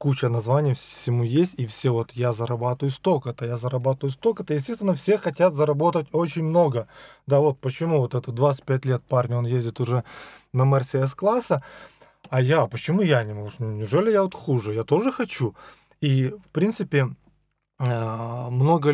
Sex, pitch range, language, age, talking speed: male, 130-155 Hz, Russian, 20-39, 155 wpm